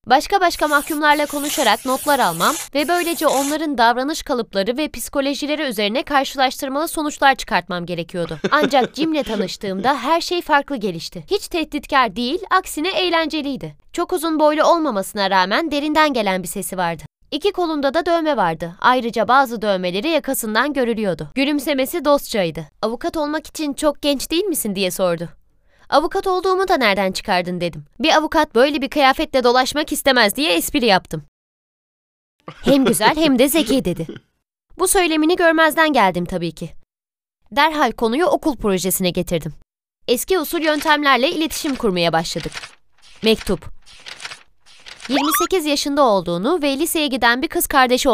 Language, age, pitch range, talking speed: Turkish, 20-39, 200-310 Hz, 135 wpm